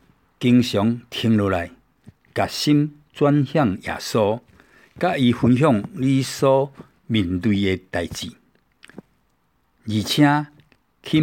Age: 60-79